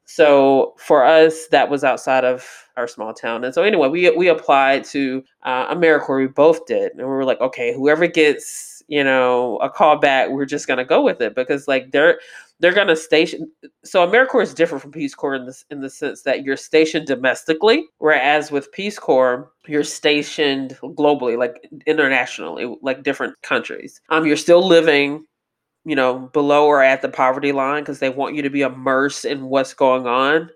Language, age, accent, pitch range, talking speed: English, 30-49, American, 135-155 Hz, 190 wpm